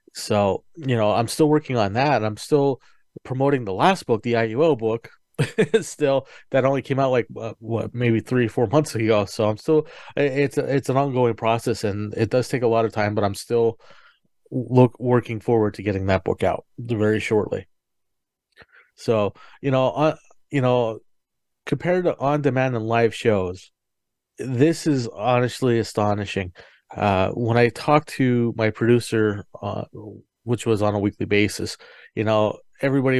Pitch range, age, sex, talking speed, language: 105-130 Hz, 30-49, male, 165 wpm, English